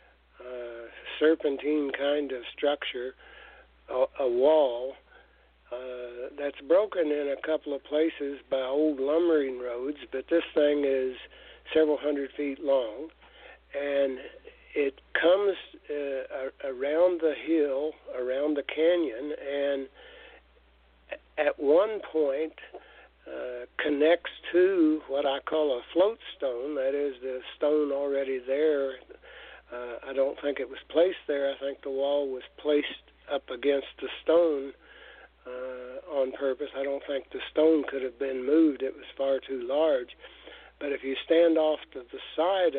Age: 60-79